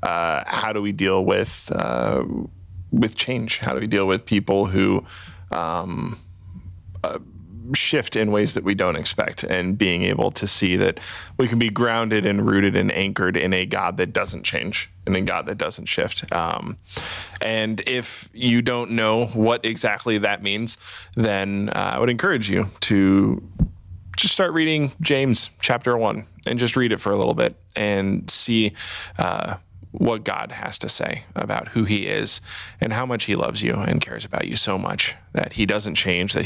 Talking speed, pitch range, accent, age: 185 wpm, 95-115 Hz, American, 20-39